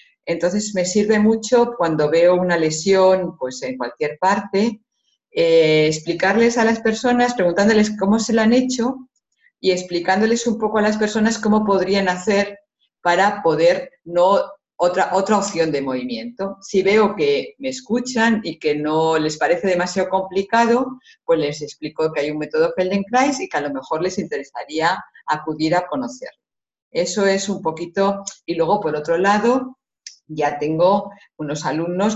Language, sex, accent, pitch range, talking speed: German, female, Spanish, 160-225 Hz, 155 wpm